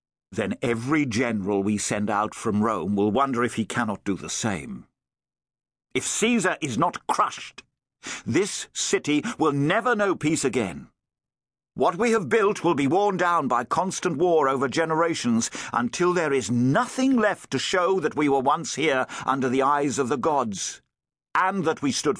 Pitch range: 120-190 Hz